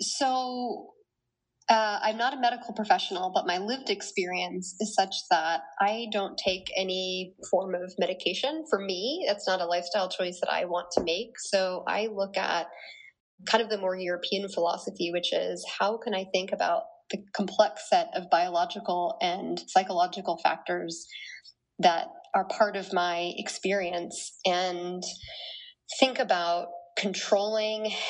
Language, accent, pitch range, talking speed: English, American, 180-215 Hz, 145 wpm